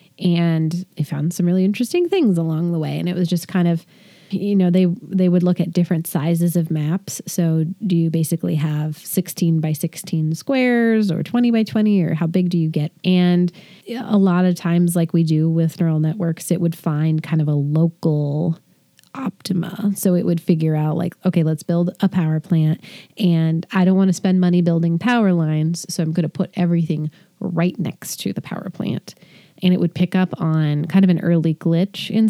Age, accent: 30-49, American